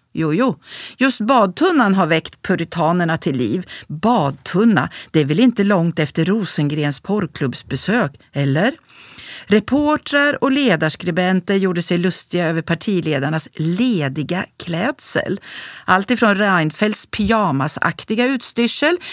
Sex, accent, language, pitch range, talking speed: female, native, Swedish, 160-210 Hz, 105 wpm